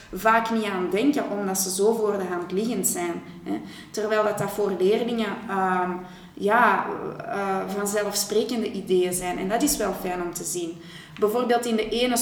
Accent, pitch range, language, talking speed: Dutch, 190-225 Hz, Dutch, 170 wpm